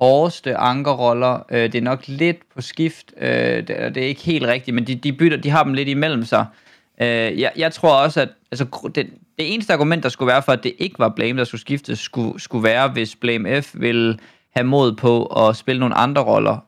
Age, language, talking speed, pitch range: 20-39, Danish, 230 wpm, 120-145 Hz